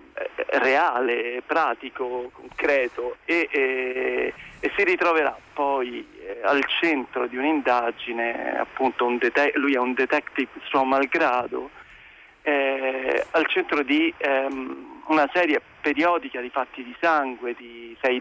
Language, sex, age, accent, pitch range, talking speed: Italian, male, 40-59, native, 130-190 Hz, 115 wpm